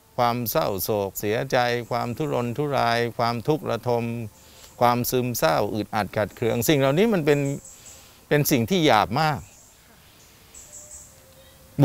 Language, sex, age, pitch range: Thai, male, 60-79, 115-160 Hz